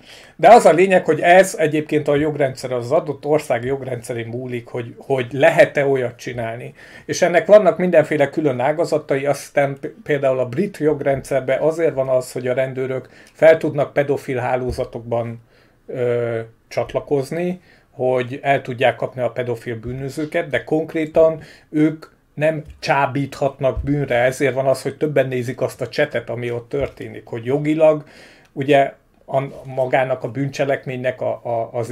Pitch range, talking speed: 125-145 Hz, 135 wpm